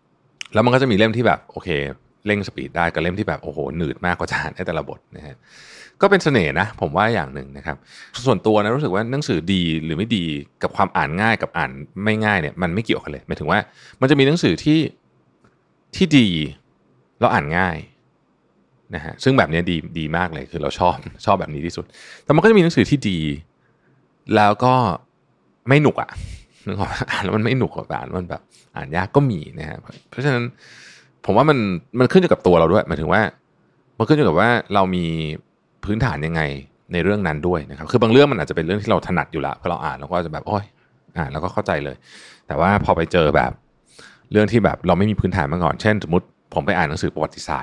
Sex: male